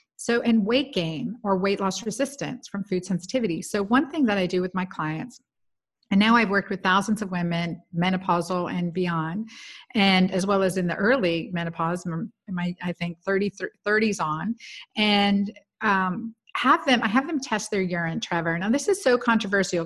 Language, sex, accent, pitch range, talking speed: English, female, American, 185-230 Hz, 185 wpm